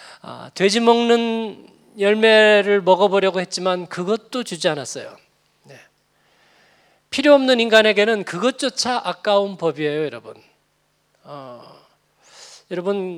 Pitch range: 155-210 Hz